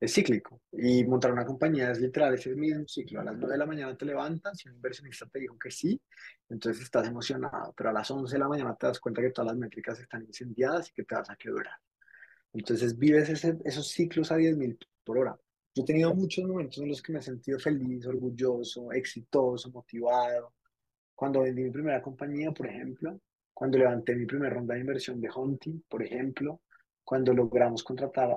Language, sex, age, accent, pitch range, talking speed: Spanish, male, 20-39, Colombian, 120-150 Hz, 205 wpm